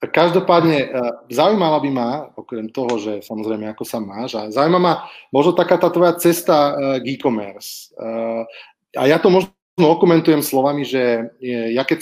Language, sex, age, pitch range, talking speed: Slovak, male, 30-49, 125-160 Hz, 140 wpm